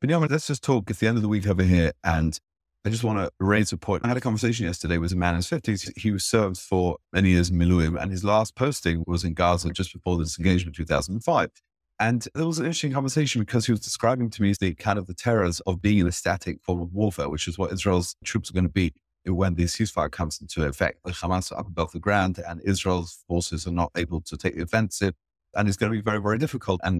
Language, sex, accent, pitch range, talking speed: English, male, British, 90-115 Hz, 260 wpm